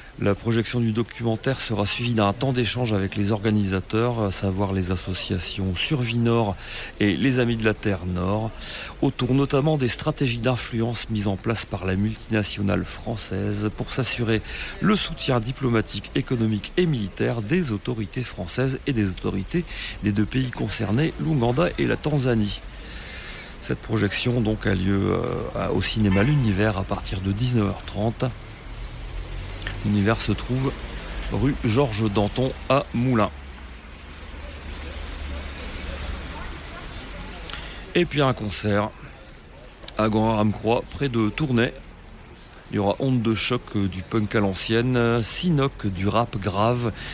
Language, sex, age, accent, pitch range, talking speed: French, male, 40-59, French, 95-120 Hz, 130 wpm